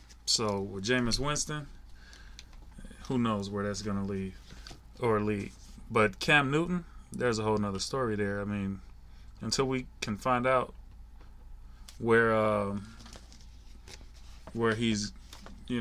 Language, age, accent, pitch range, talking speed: English, 30-49, American, 100-115 Hz, 130 wpm